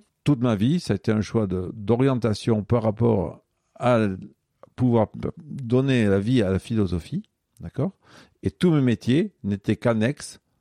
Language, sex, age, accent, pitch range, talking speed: French, male, 50-69, French, 100-130 Hz, 155 wpm